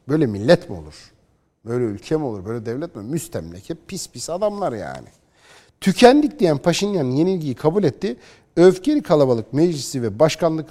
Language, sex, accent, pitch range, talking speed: Turkish, male, native, 110-170 Hz, 155 wpm